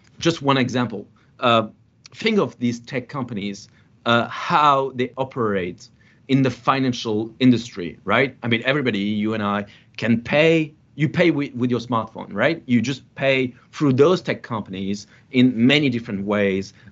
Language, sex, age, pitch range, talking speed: English, male, 40-59, 115-140 Hz, 155 wpm